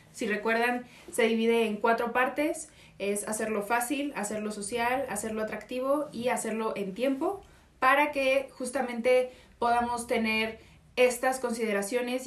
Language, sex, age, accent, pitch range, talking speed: Spanish, female, 20-39, Mexican, 215-255 Hz, 120 wpm